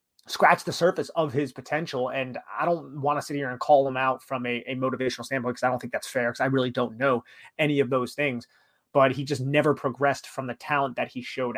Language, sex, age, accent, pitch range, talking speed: English, male, 30-49, American, 125-145 Hz, 250 wpm